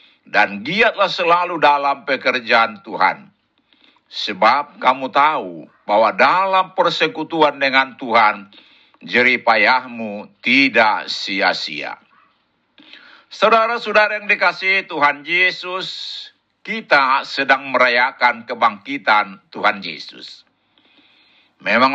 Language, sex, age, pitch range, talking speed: Indonesian, male, 60-79, 135-190 Hz, 80 wpm